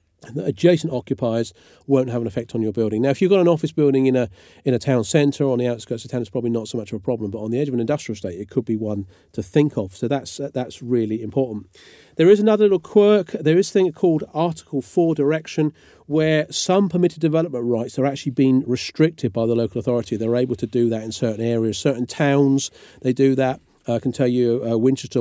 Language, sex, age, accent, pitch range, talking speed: English, male, 40-59, British, 120-155 Hz, 240 wpm